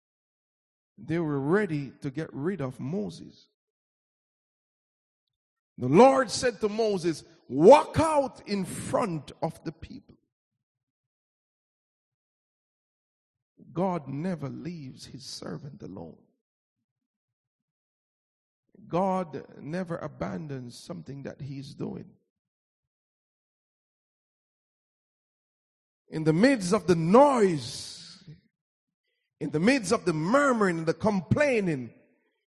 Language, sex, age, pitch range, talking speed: English, male, 50-69, 145-230 Hz, 90 wpm